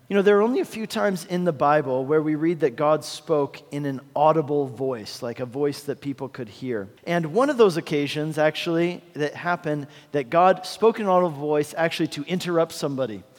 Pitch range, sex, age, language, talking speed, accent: 145-180 Hz, male, 40-59, English, 210 wpm, American